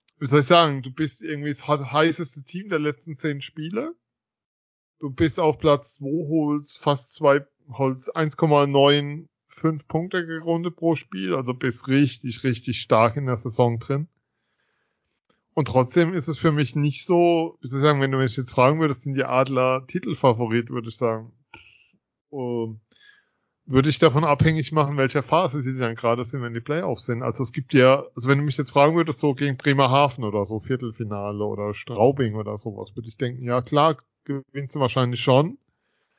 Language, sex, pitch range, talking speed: German, male, 120-150 Hz, 175 wpm